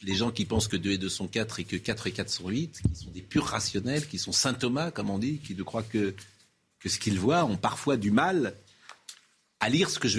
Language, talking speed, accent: French, 265 wpm, French